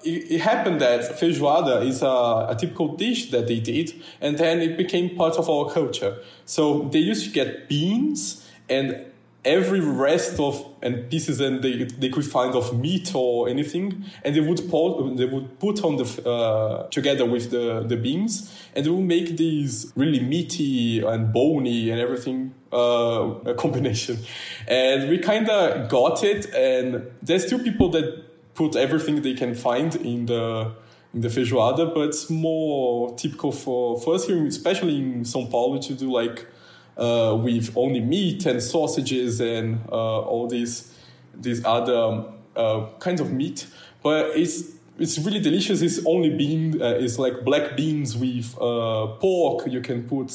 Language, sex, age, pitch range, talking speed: English, male, 20-39, 120-160 Hz, 170 wpm